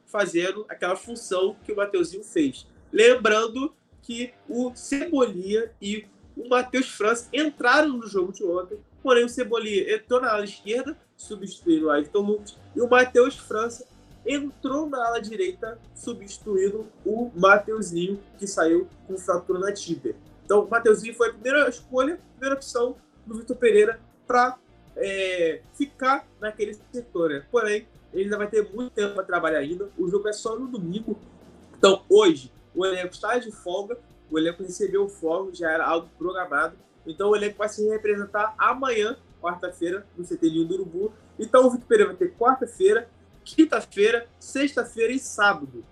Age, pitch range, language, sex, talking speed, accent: 20-39, 200-260 Hz, Portuguese, male, 160 wpm, Brazilian